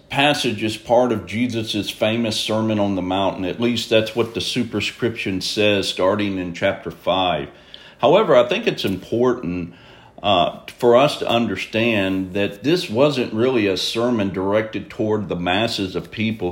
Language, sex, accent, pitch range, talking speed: English, male, American, 100-120 Hz, 155 wpm